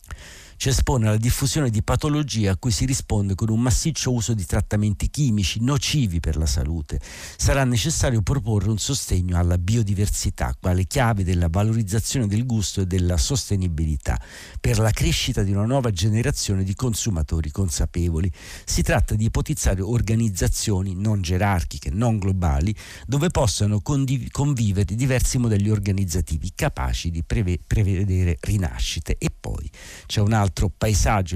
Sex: male